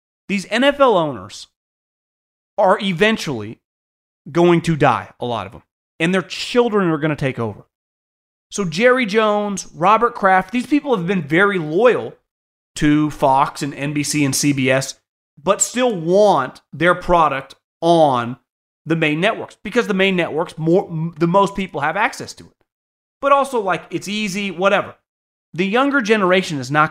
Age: 30-49